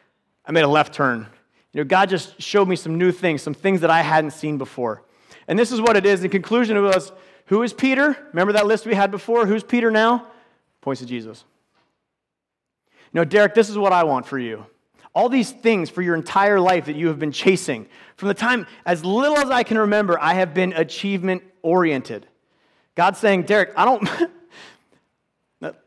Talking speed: 205 wpm